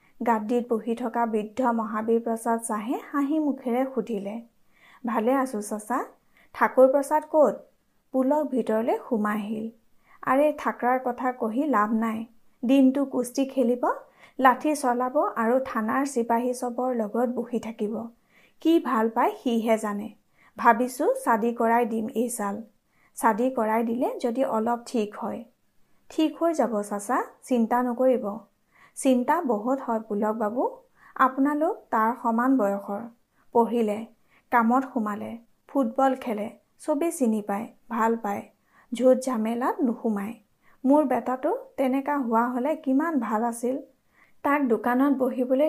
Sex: female